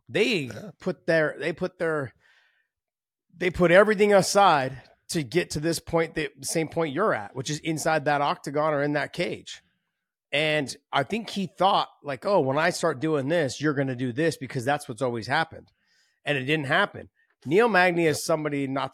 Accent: American